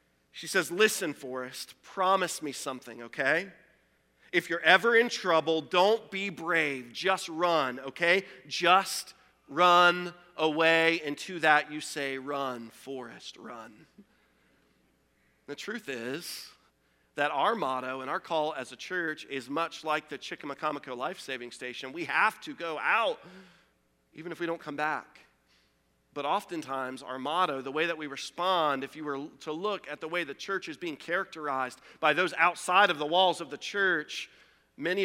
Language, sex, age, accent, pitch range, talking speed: English, male, 40-59, American, 135-185 Hz, 160 wpm